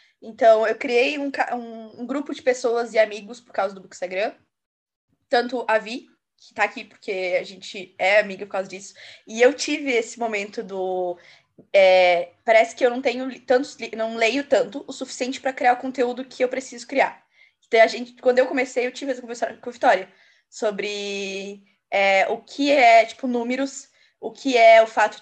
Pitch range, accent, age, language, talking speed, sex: 220-265 Hz, Brazilian, 10-29, Portuguese, 190 wpm, female